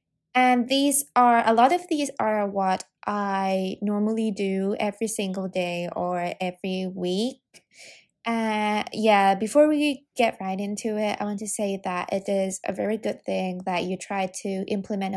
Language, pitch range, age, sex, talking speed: English, 185-225 Hz, 20-39, female, 165 wpm